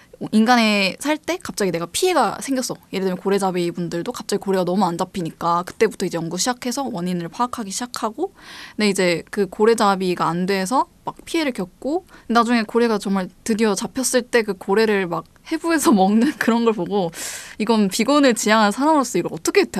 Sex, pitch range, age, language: female, 185-255 Hz, 20-39, Korean